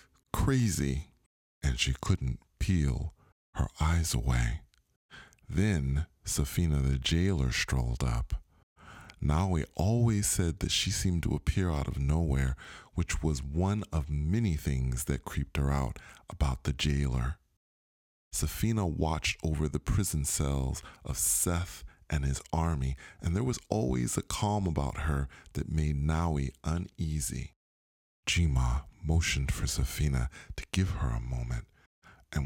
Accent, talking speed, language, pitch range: American, 130 wpm, English, 70-90 Hz